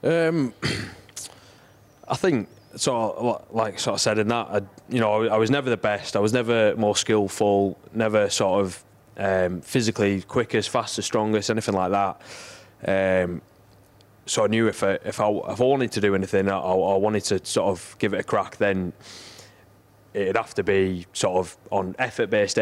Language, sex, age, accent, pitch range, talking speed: English, male, 20-39, British, 95-110 Hz, 180 wpm